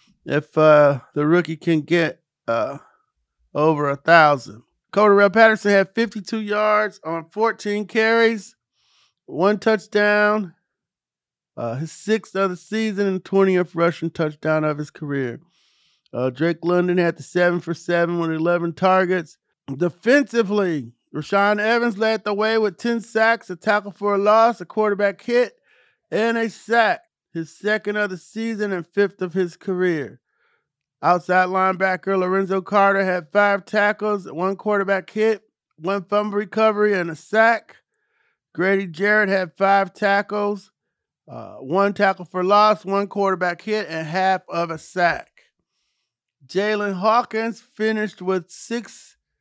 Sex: male